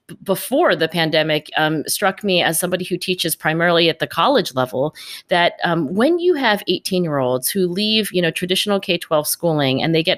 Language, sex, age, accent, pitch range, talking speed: English, female, 40-59, American, 155-210 Hz, 195 wpm